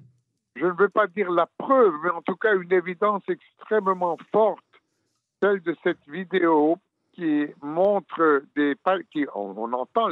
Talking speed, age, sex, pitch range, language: 140 wpm, 60-79, male, 145-190 Hz, French